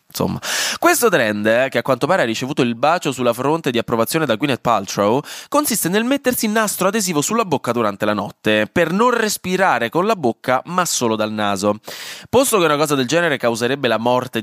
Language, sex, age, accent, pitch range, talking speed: Italian, male, 20-39, native, 110-165 Hz, 205 wpm